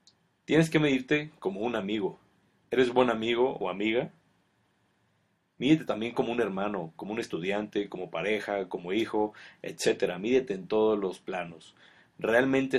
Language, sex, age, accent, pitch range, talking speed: Spanish, male, 30-49, Mexican, 105-135 Hz, 140 wpm